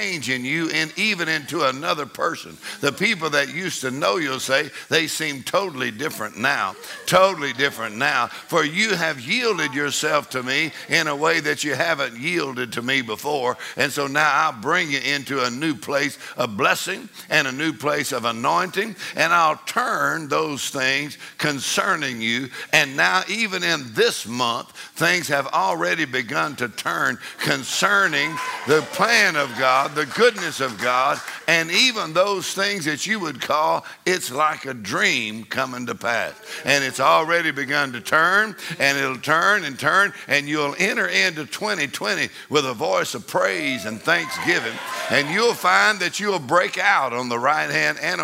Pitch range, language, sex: 140-185 Hz, English, male